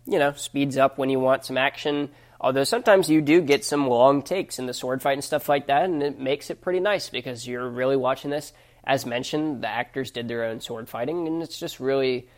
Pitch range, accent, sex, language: 125-145 Hz, American, male, English